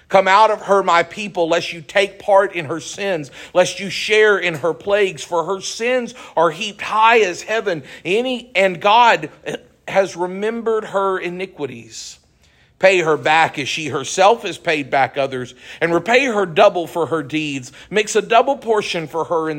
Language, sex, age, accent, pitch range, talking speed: English, male, 50-69, American, 150-195 Hz, 175 wpm